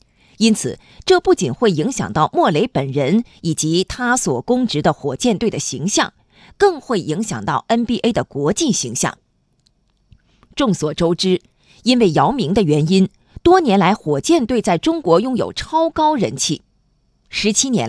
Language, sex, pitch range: Chinese, female, 165-280 Hz